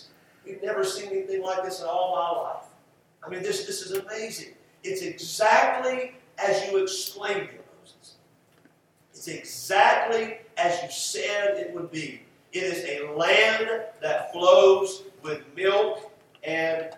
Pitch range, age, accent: 175-280 Hz, 50-69, American